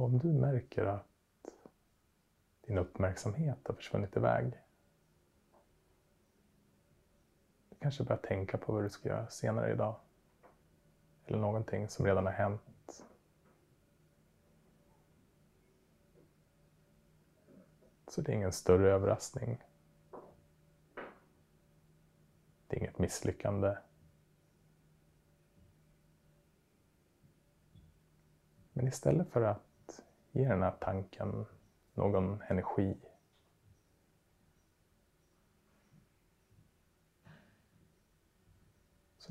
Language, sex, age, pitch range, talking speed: Swedish, male, 30-49, 80-110 Hz, 70 wpm